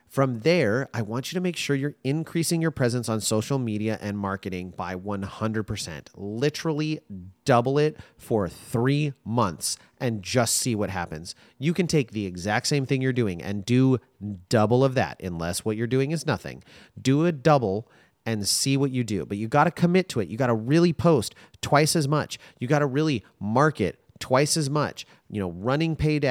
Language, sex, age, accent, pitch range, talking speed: English, male, 30-49, American, 100-145 Hz, 195 wpm